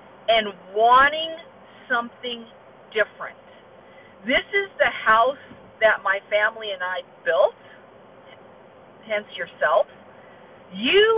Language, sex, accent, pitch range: English, female, American, 210-315 Hz